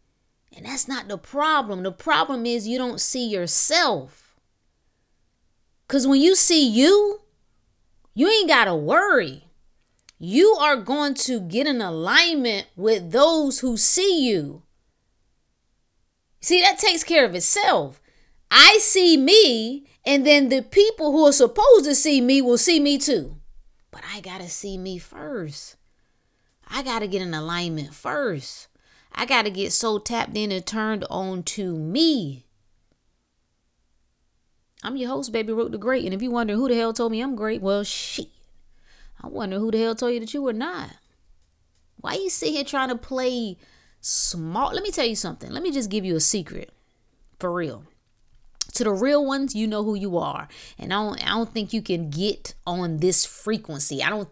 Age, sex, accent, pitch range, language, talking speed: 30-49, female, American, 185-280 Hz, English, 175 wpm